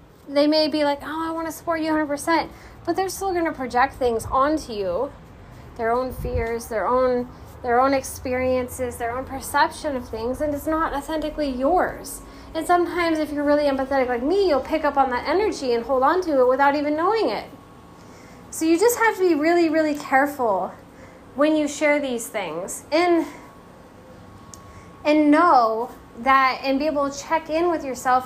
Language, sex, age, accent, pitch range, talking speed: English, female, 10-29, American, 250-310 Hz, 185 wpm